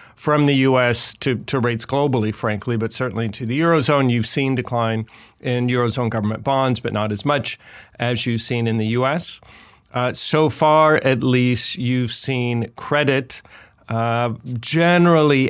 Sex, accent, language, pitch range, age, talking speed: male, American, English, 110-130 Hz, 40-59, 155 wpm